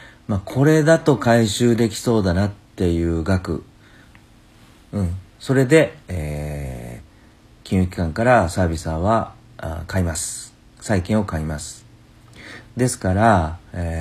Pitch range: 85-115 Hz